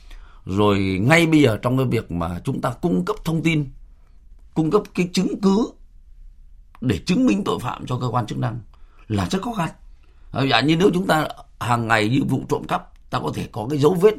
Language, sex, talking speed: Vietnamese, male, 215 wpm